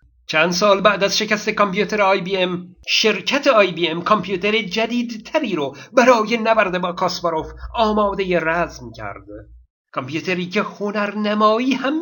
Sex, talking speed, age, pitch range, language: male, 125 wpm, 50-69, 170-225 Hz, Persian